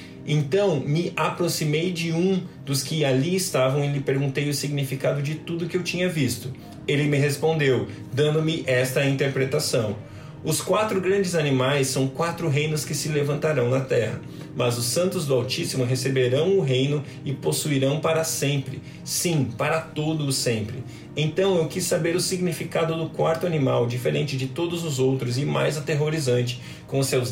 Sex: male